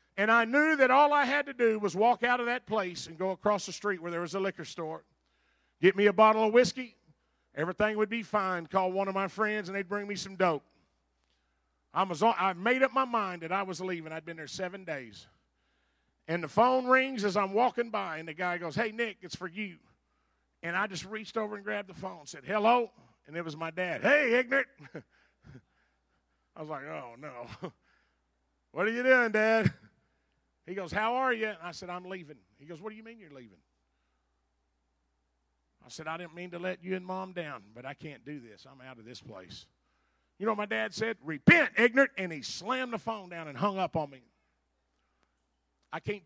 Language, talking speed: English, 220 wpm